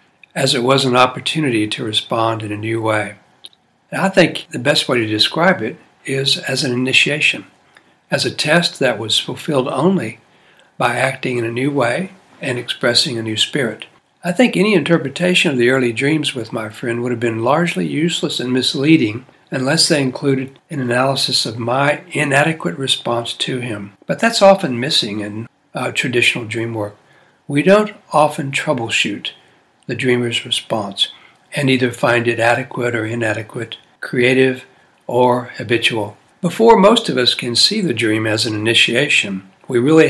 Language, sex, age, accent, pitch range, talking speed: English, male, 60-79, American, 115-150 Hz, 160 wpm